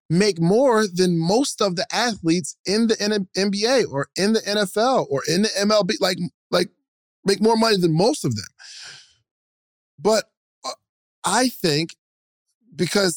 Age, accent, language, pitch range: 20-39, American, English, 145-200 Hz